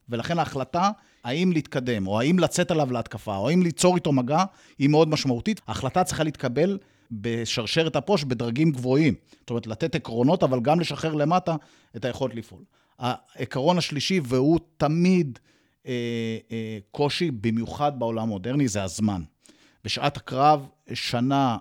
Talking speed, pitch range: 110 wpm, 120-160 Hz